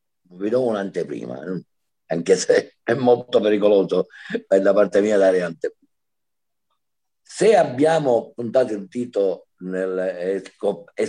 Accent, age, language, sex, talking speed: native, 50-69, Italian, male, 115 wpm